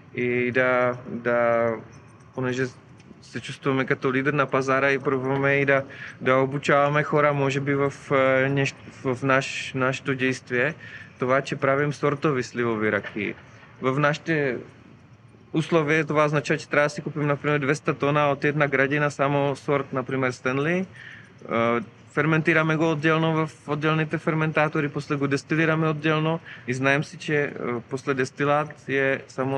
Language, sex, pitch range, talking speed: Bulgarian, male, 130-150 Hz, 135 wpm